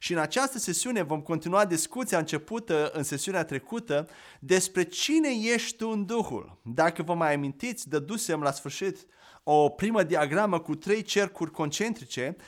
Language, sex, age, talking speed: Romanian, male, 30-49, 150 wpm